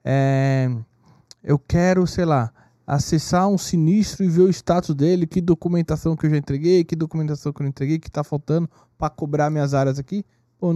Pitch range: 135-175 Hz